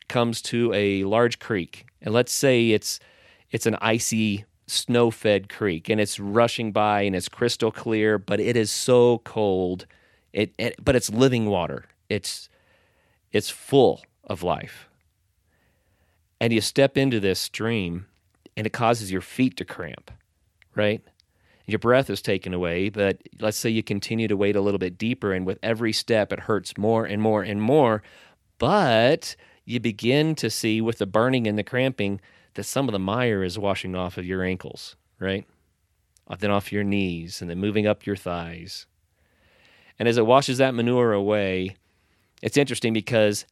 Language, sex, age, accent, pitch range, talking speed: English, male, 30-49, American, 95-120 Hz, 170 wpm